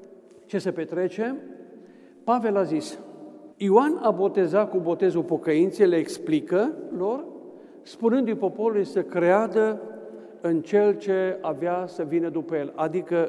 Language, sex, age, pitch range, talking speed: Romanian, male, 50-69, 170-225 Hz, 125 wpm